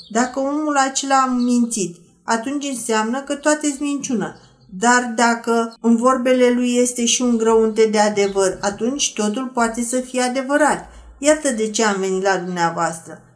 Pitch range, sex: 210-250 Hz, female